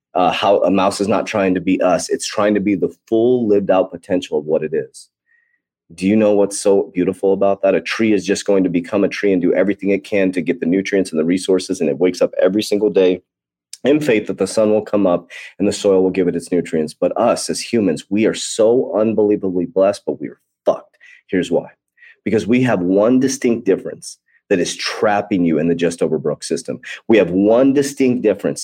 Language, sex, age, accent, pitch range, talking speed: English, male, 30-49, American, 95-125 Hz, 230 wpm